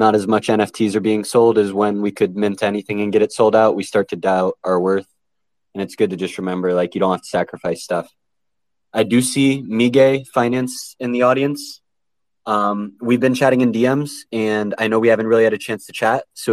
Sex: male